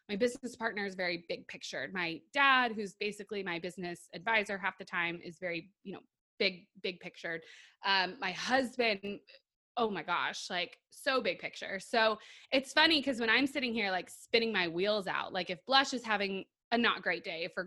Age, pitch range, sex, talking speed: 20-39, 200-290 Hz, female, 195 wpm